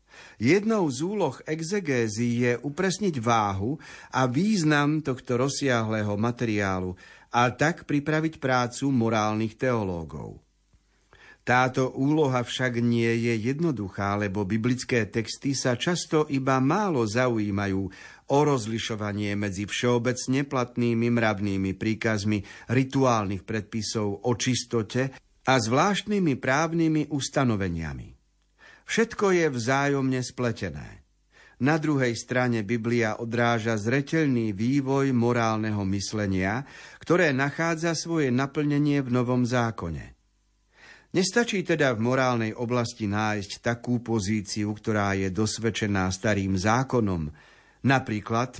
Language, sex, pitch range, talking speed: Slovak, male, 110-140 Hz, 100 wpm